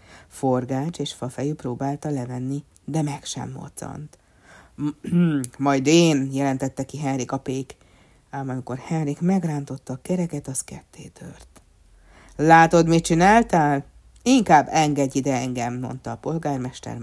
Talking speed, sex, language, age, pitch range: 125 wpm, female, Hungarian, 60-79, 125-165 Hz